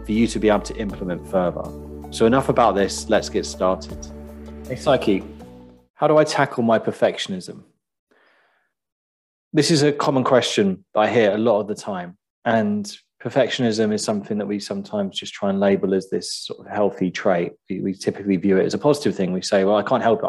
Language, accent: English, British